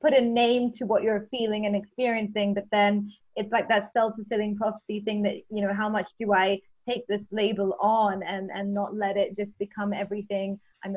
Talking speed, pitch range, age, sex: 200 wpm, 200-235 Hz, 20-39, female